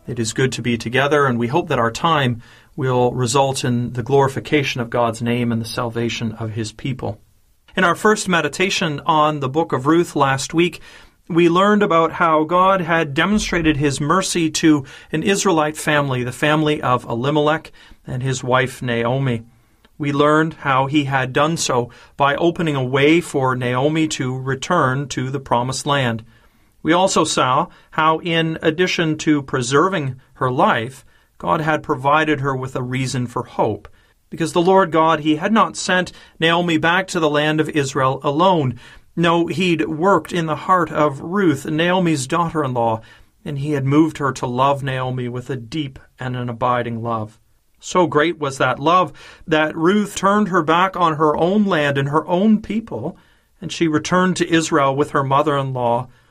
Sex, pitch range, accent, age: male, 130-165 Hz, American, 40-59